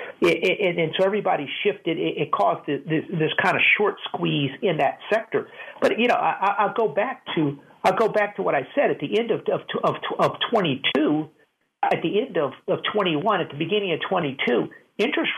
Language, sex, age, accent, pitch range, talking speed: English, male, 50-69, American, 150-205 Hz, 225 wpm